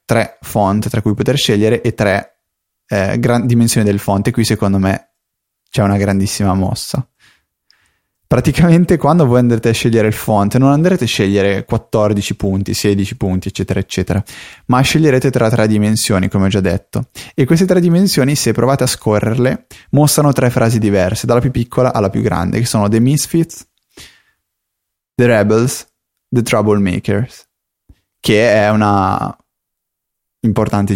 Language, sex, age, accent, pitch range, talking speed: Italian, male, 20-39, native, 105-130 Hz, 150 wpm